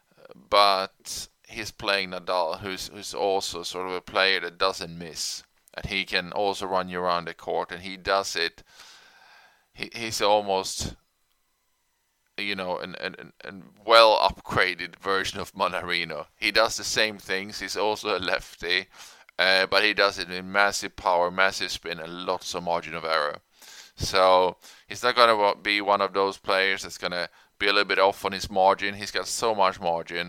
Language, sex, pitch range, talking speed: English, male, 85-100 Hz, 180 wpm